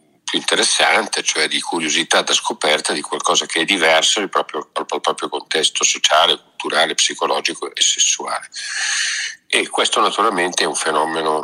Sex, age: male, 50-69